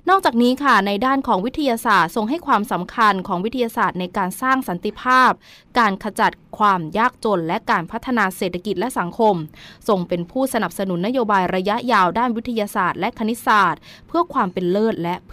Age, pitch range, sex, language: 20-39, 185-235 Hz, female, Thai